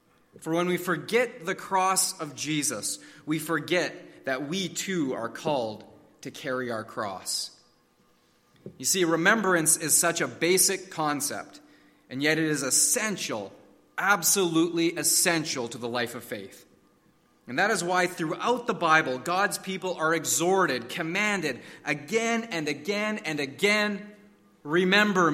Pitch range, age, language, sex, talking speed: 160-200 Hz, 30-49, English, male, 135 wpm